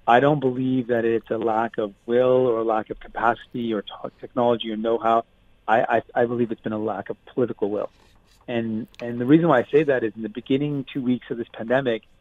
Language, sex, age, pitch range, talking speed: English, male, 30-49, 115-130 Hz, 230 wpm